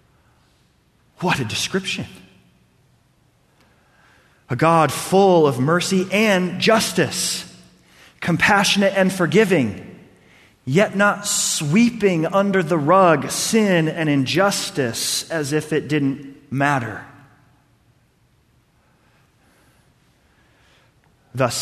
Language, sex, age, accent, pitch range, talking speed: English, male, 30-49, American, 120-180 Hz, 80 wpm